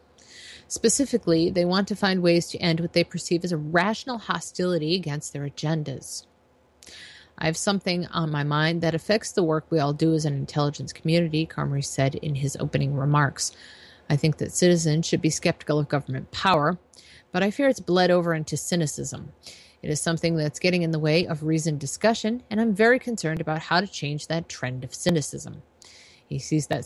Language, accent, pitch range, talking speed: English, American, 150-180 Hz, 190 wpm